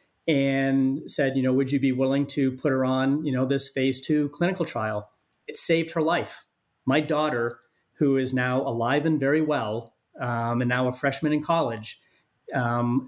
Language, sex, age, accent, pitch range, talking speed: English, male, 40-59, American, 120-145 Hz, 185 wpm